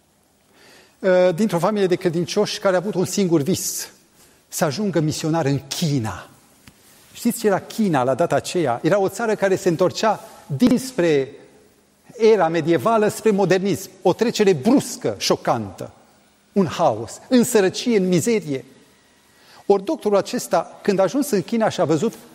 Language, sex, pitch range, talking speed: Romanian, male, 155-210 Hz, 140 wpm